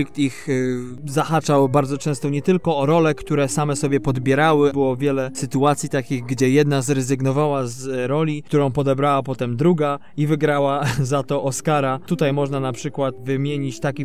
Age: 20-39